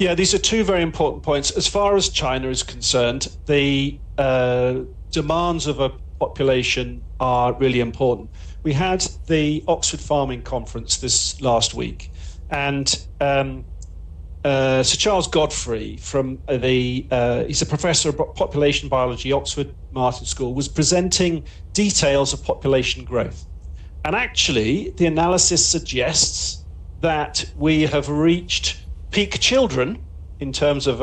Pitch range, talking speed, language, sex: 120-155 Hz, 135 wpm, English, male